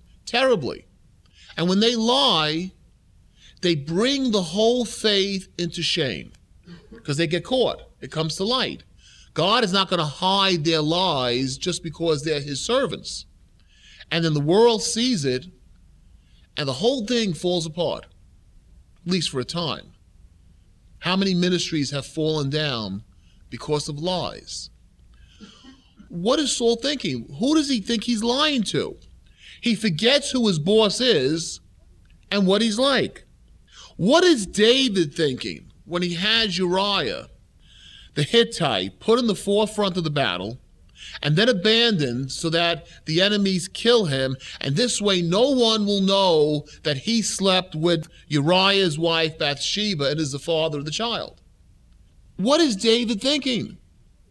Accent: American